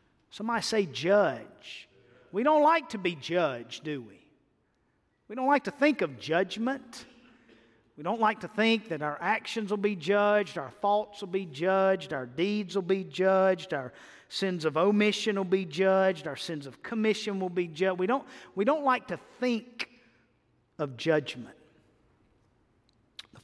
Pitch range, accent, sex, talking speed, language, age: 155-225 Hz, American, male, 160 wpm, English, 50-69